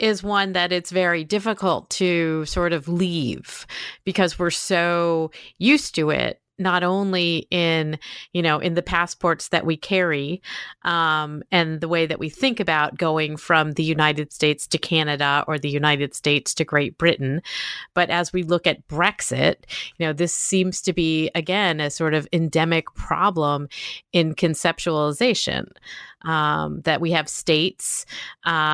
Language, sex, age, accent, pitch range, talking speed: English, female, 30-49, American, 155-185 Hz, 155 wpm